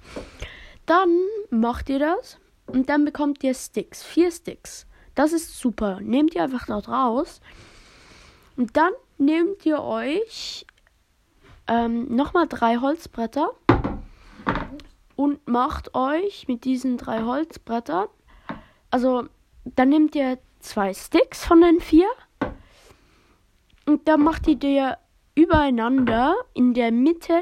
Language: German